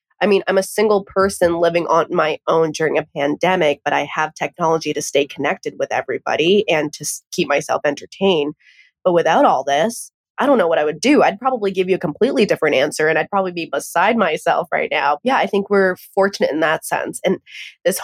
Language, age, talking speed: English, 20-39, 215 wpm